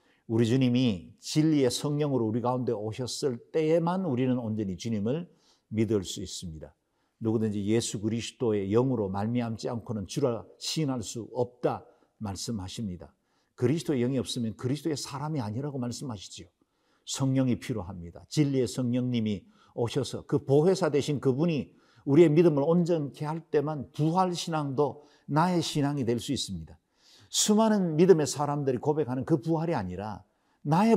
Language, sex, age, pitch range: Korean, male, 50-69, 105-150 Hz